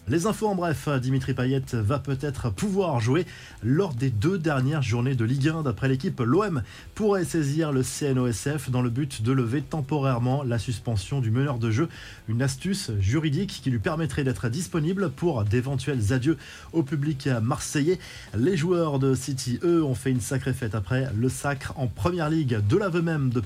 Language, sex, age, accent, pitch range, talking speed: French, male, 20-39, French, 120-155 Hz, 180 wpm